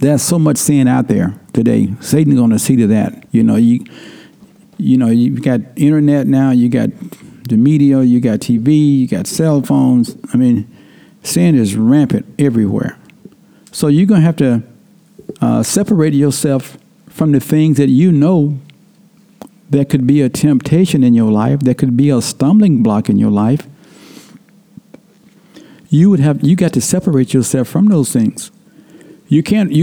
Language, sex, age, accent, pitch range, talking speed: English, male, 60-79, American, 130-190 Hz, 165 wpm